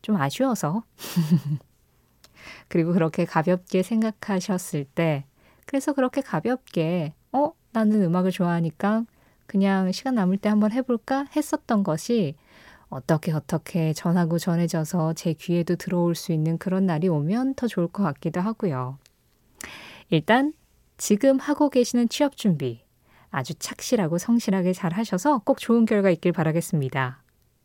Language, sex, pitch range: Korean, female, 160-240 Hz